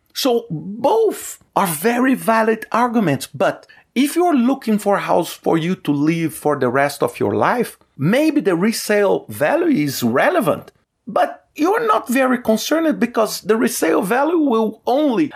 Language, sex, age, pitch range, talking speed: English, male, 40-59, 140-220 Hz, 155 wpm